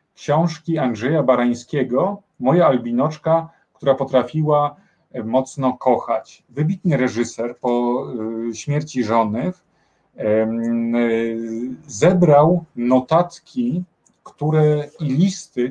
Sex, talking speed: male, 75 wpm